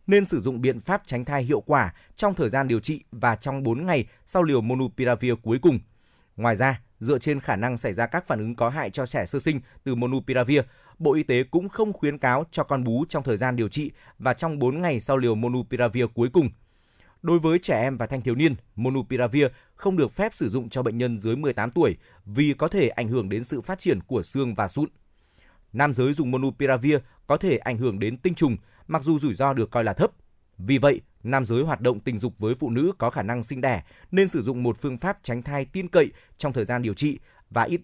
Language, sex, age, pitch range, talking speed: Vietnamese, male, 20-39, 120-150 Hz, 240 wpm